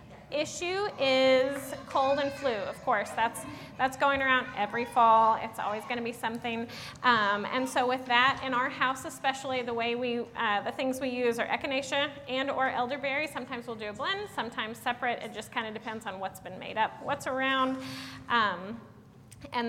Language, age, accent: English, 30-49, American